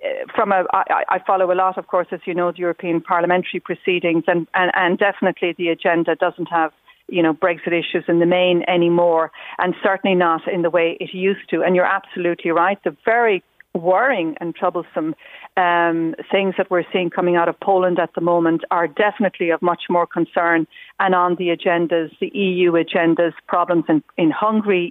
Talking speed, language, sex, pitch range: 190 wpm, English, female, 175-205 Hz